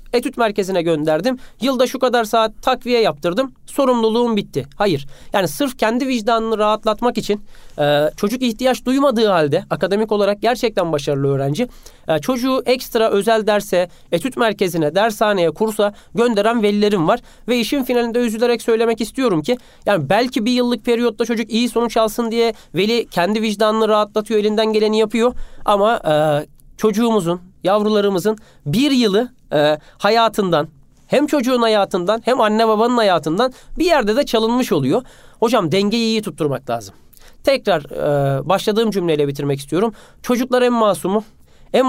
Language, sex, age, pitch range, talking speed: Turkish, male, 40-59, 190-235 Hz, 140 wpm